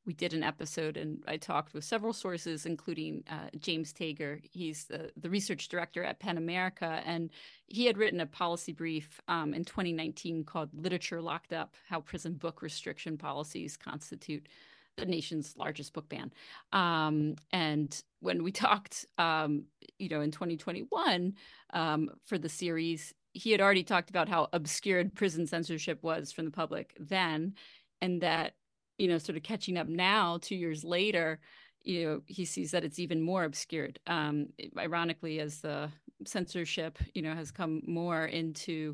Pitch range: 155-180 Hz